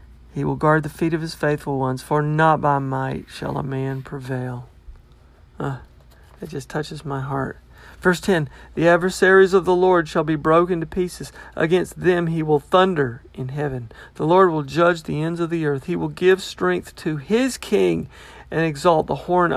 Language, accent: English, American